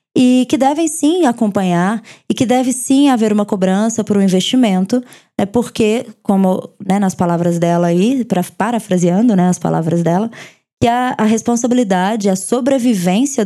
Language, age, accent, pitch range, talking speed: Portuguese, 20-39, Brazilian, 195-250 Hz, 145 wpm